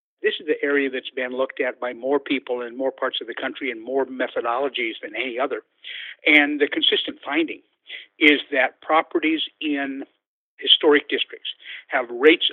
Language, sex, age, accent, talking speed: English, male, 50-69, American, 170 wpm